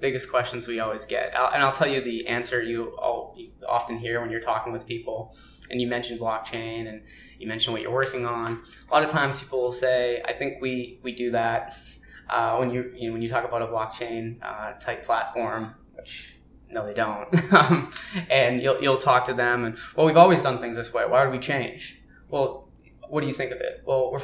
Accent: American